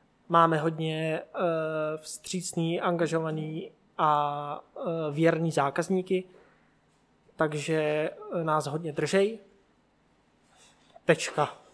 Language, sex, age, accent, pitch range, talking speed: Czech, male, 20-39, native, 155-185 Hz, 60 wpm